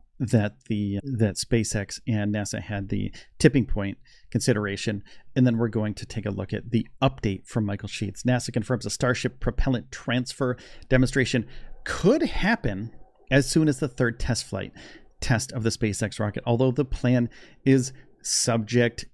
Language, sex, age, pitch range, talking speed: English, male, 40-59, 110-145 Hz, 160 wpm